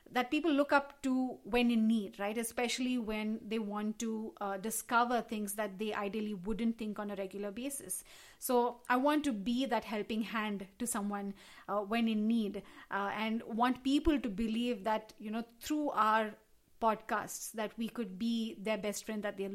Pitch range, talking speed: 210-250 Hz, 185 wpm